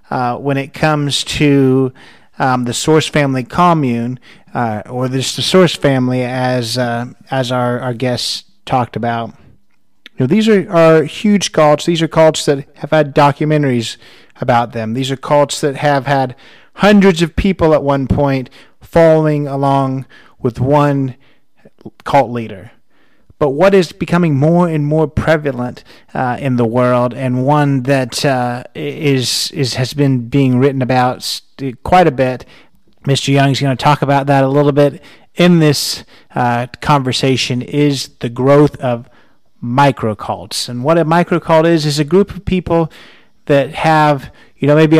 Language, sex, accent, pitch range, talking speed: English, male, American, 125-155 Hz, 160 wpm